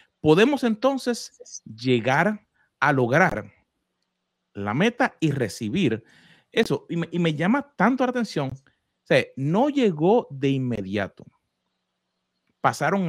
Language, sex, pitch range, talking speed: Spanish, male, 140-205 Hz, 115 wpm